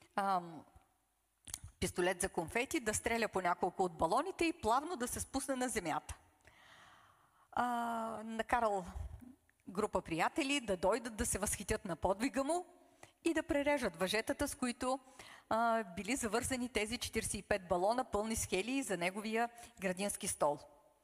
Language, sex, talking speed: Bulgarian, female, 135 wpm